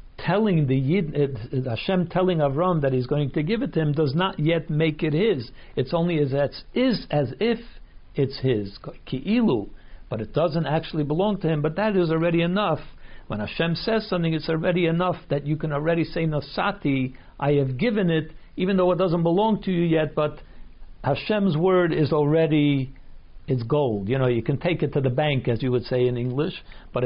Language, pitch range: English, 130-165 Hz